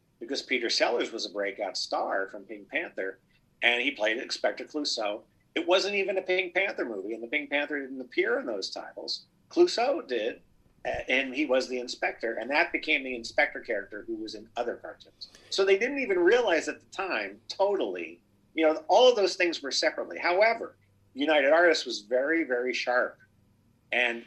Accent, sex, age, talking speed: American, male, 50-69, 185 wpm